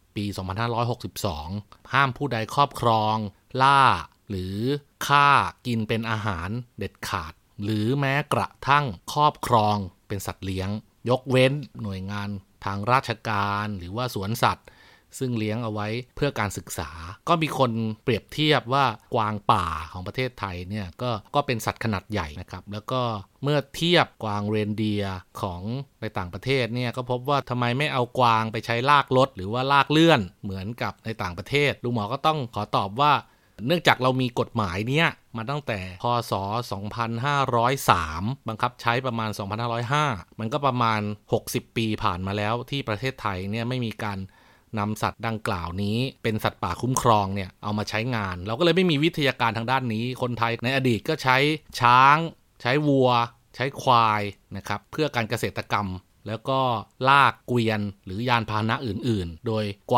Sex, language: male, Thai